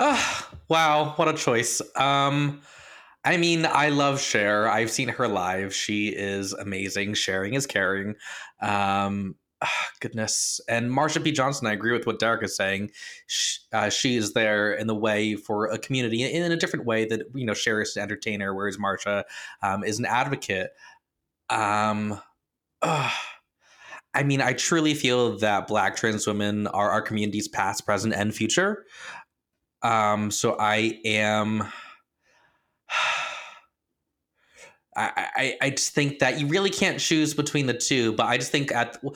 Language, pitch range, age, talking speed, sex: English, 105-135 Hz, 20-39, 150 wpm, male